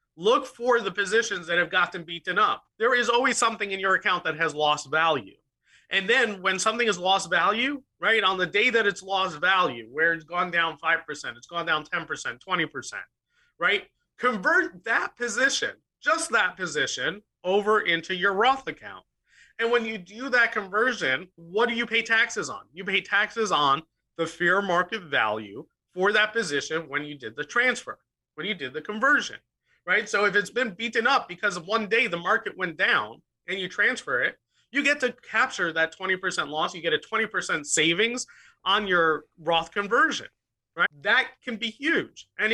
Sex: male